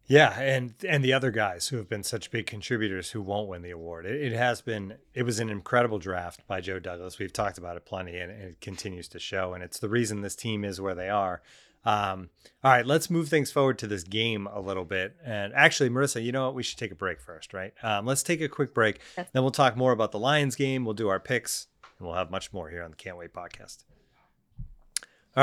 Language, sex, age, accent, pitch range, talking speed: English, male, 30-49, American, 100-130 Hz, 250 wpm